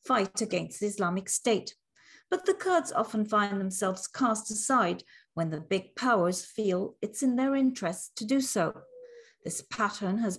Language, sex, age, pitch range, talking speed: English, female, 40-59, 180-240 Hz, 160 wpm